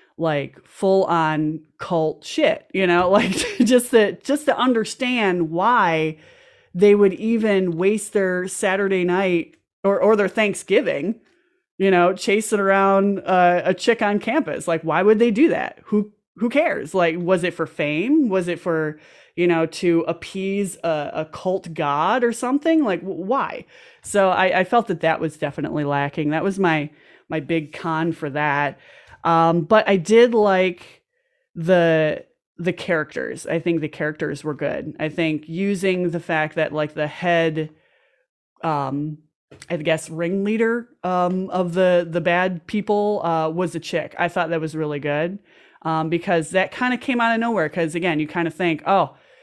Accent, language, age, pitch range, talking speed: American, English, 30-49, 160-200 Hz, 170 wpm